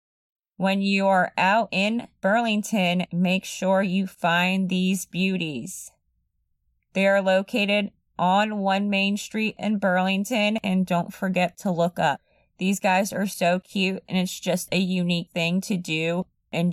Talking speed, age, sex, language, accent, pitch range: 145 wpm, 30-49, female, English, American, 180-210 Hz